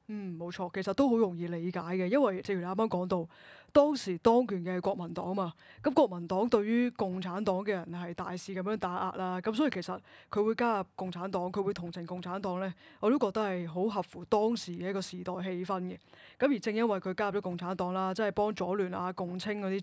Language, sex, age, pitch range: Chinese, female, 20-39, 185-230 Hz